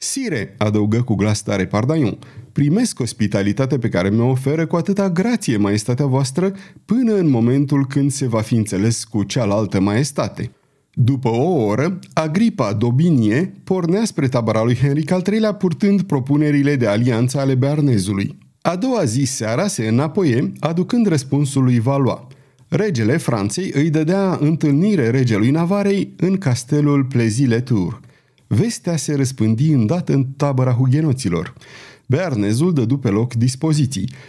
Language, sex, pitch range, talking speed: Romanian, male, 115-165 Hz, 135 wpm